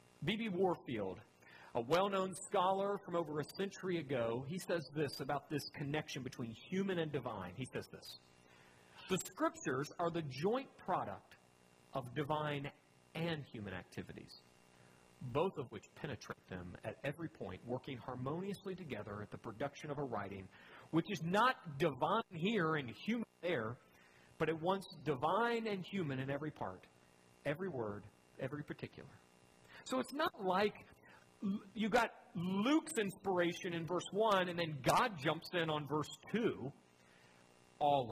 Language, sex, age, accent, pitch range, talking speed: English, male, 40-59, American, 125-185 Hz, 145 wpm